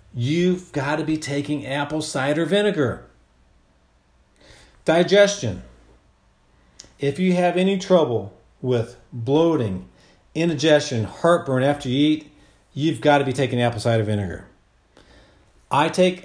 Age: 40-59